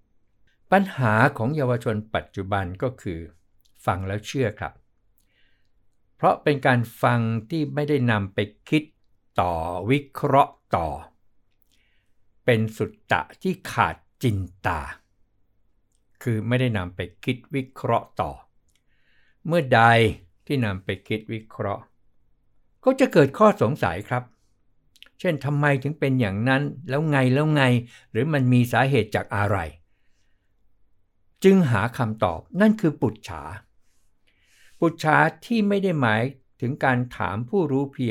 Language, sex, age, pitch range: Thai, male, 60-79, 100-135 Hz